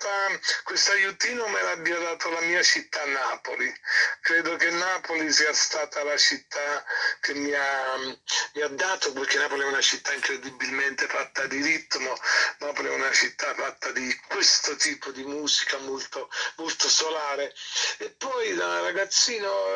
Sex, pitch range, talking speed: male, 145-195 Hz, 145 wpm